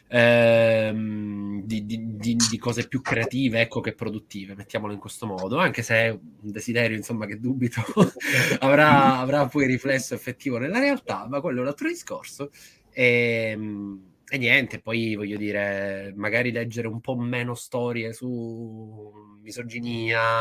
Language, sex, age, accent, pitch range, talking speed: Italian, male, 20-39, native, 105-120 Hz, 145 wpm